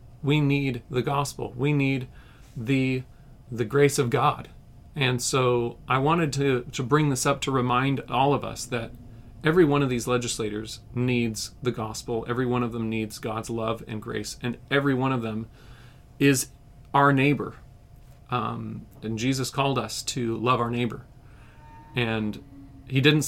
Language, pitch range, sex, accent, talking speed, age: English, 115-135 Hz, male, American, 160 wpm, 40-59